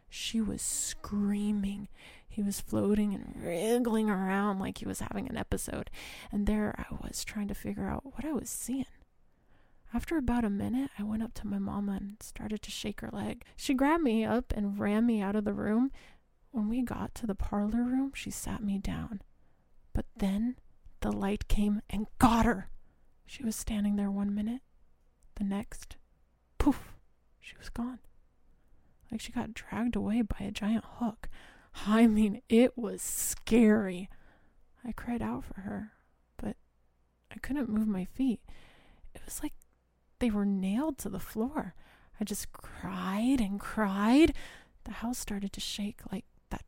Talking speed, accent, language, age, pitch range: 170 wpm, American, English, 20-39, 200-235 Hz